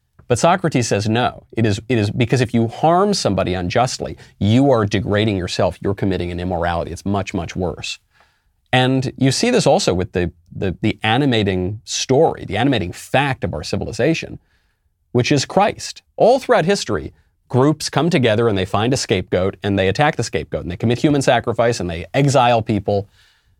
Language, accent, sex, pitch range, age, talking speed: English, American, male, 95-130 Hz, 40-59, 180 wpm